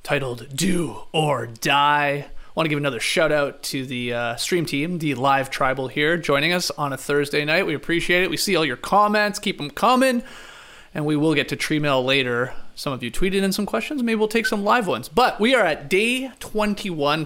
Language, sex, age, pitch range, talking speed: English, male, 30-49, 140-200 Hz, 225 wpm